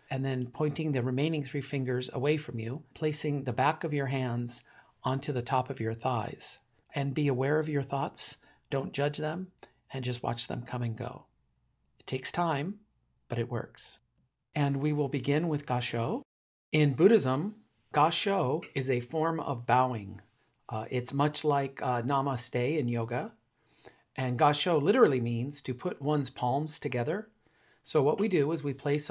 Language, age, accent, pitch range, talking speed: English, 40-59, American, 125-155 Hz, 170 wpm